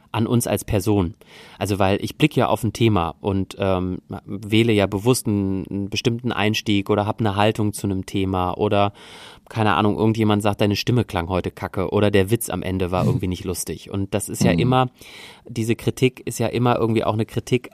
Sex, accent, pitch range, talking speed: male, German, 95-115 Hz, 205 wpm